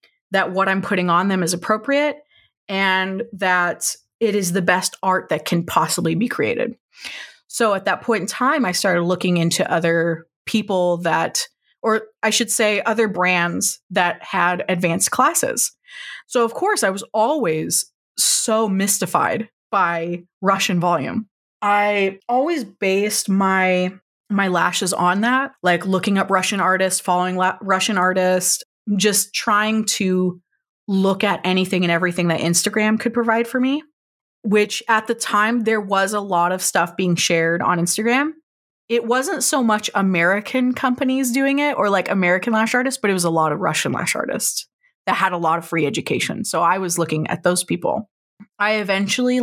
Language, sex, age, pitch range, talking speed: English, female, 20-39, 180-225 Hz, 165 wpm